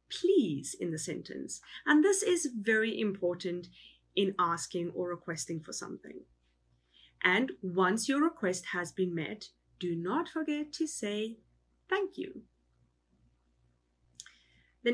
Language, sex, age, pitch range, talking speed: English, female, 30-49, 160-255 Hz, 120 wpm